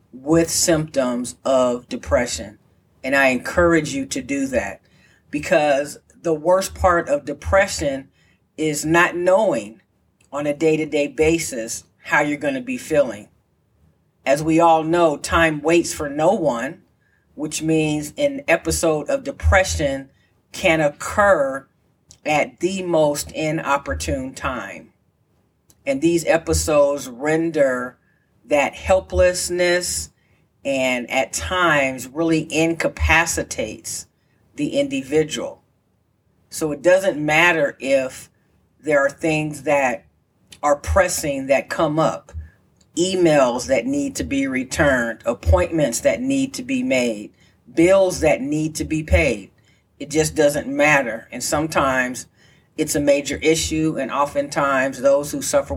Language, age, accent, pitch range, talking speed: English, 40-59, American, 135-180 Hz, 120 wpm